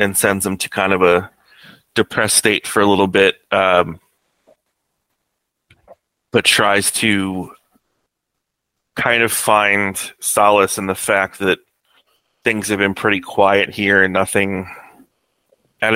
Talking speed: 130 wpm